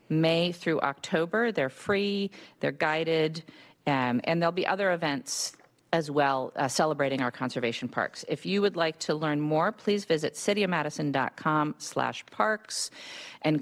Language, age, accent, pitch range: English, 40-59, American, 150-195 Hz